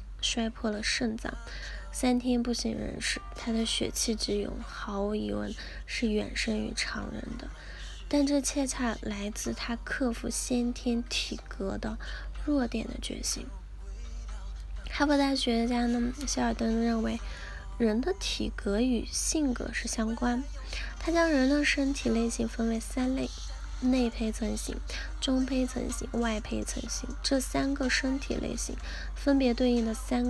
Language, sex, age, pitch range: Chinese, female, 10-29, 225-260 Hz